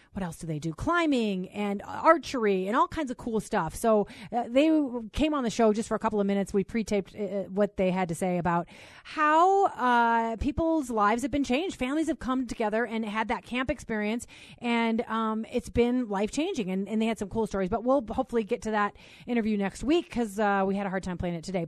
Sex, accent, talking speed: female, American, 235 wpm